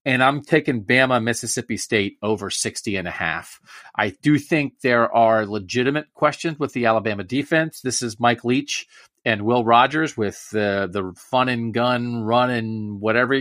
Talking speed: 170 wpm